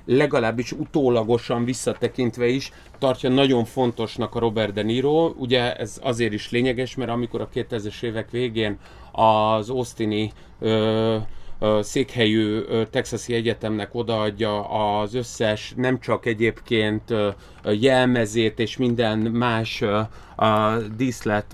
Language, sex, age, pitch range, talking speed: Hungarian, male, 30-49, 110-135 Hz, 110 wpm